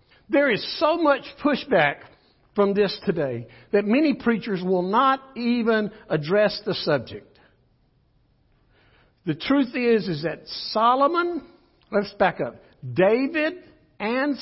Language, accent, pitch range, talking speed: English, American, 170-255 Hz, 115 wpm